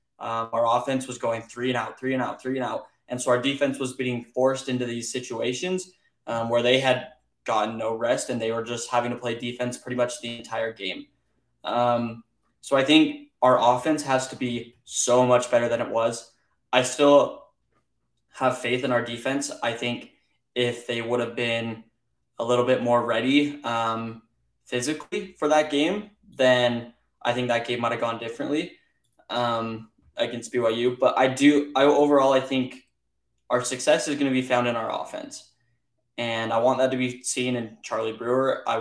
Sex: male